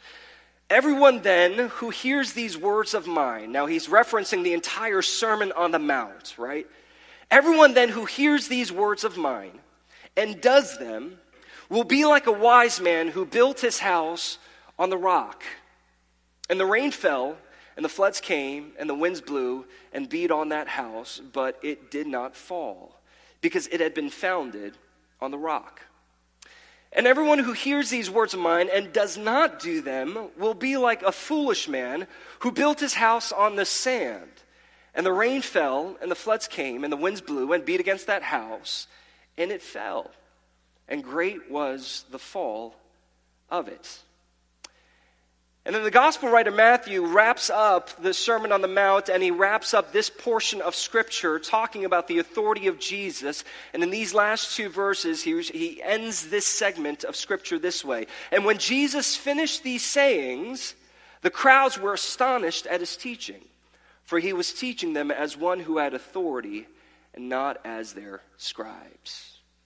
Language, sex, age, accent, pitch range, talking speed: English, male, 30-49, American, 165-265 Hz, 165 wpm